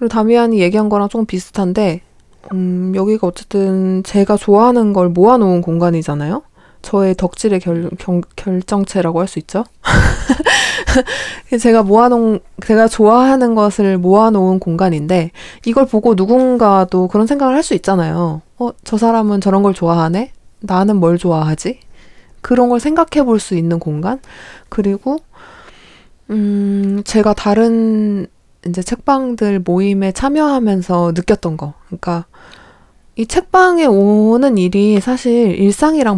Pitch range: 185-240 Hz